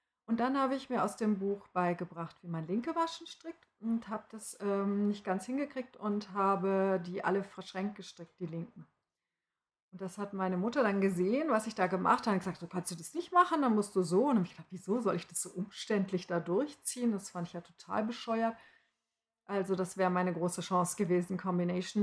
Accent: German